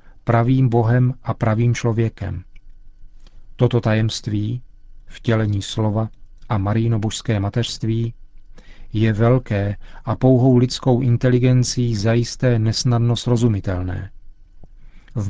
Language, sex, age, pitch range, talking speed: Czech, male, 40-59, 105-125 Hz, 85 wpm